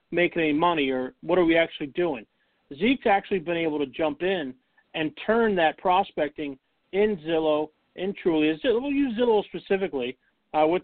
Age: 40-59